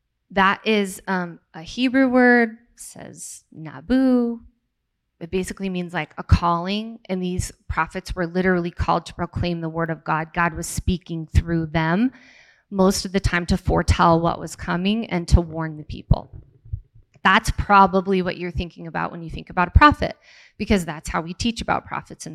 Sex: female